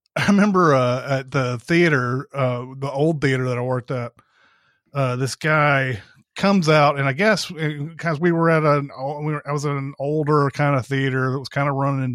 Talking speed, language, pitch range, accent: 205 wpm, English, 125-150 Hz, American